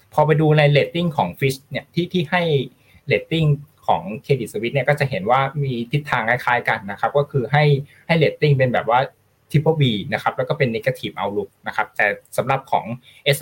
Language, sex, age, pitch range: Thai, male, 20-39, 120-150 Hz